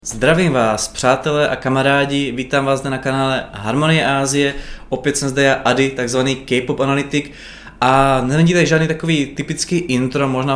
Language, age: Czech, 20-39